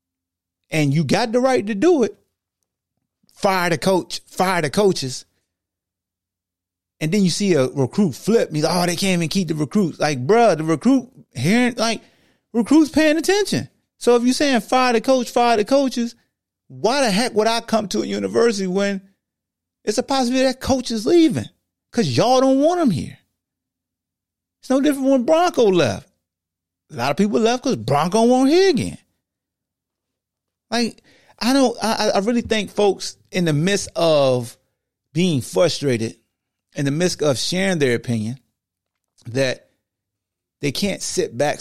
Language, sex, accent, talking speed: English, male, American, 165 wpm